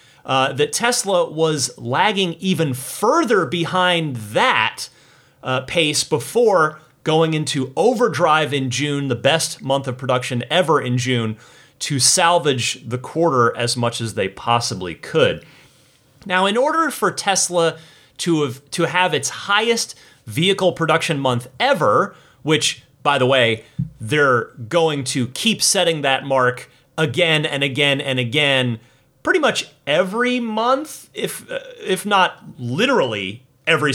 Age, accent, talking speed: 30-49, American, 135 wpm